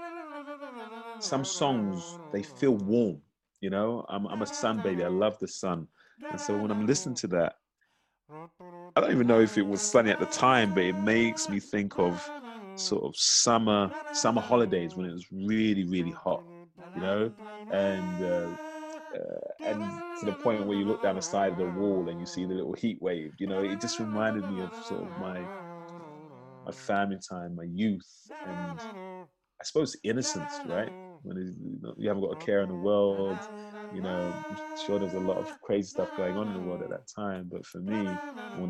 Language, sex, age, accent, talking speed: English, male, 30-49, British, 200 wpm